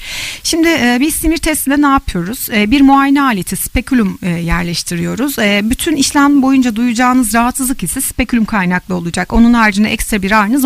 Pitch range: 195-270 Hz